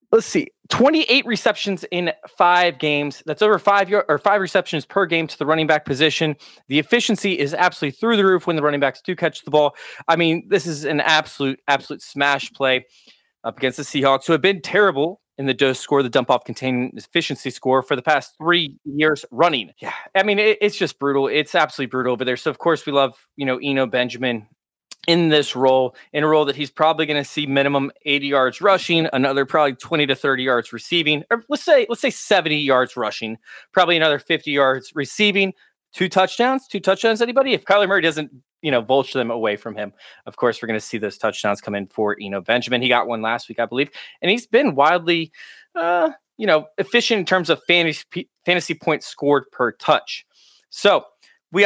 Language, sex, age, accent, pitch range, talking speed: English, male, 20-39, American, 135-185 Hz, 210 wpm